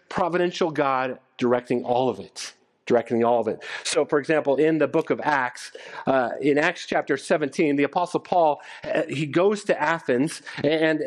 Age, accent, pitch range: 40-59, American, 165-225 Hz